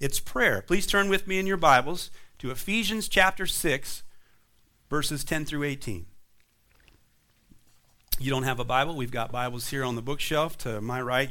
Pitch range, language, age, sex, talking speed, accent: 135-205 Hz, English, 40-59, male, 170 wpm, American